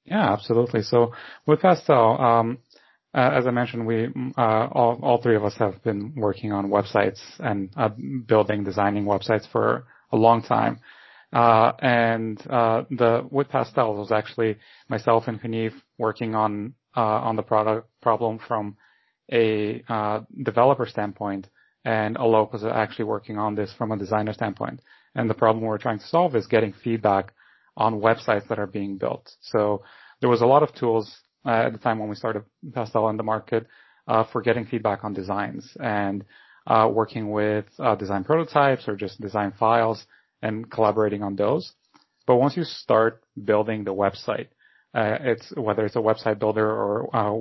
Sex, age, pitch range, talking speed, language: male, 30-49, 105-115 Hz, 175 wpm, English